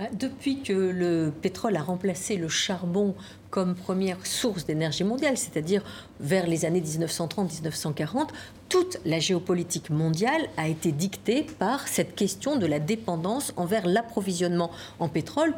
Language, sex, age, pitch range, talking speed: French, female, 50-69, 175-275 Hz, 135 wpm